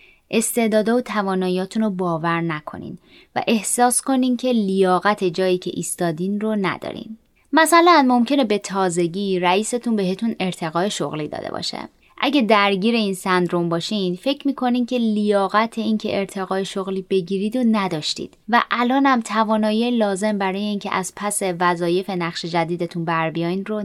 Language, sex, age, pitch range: Persian, female, 20-39, 170-220 Hz